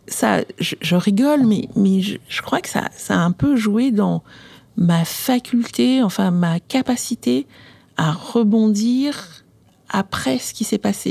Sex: female